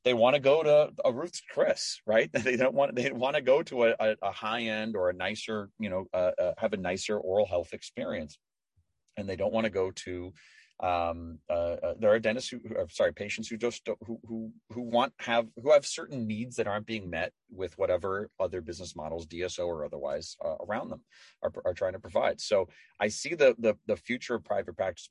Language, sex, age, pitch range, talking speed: English, male, 30-49, 85-115 Hz, 220 wpm